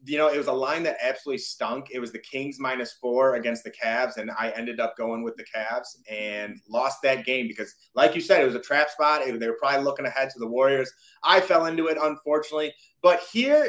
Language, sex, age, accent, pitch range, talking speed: English, male, 30-49, American, 135-180 Hz, 235 wpm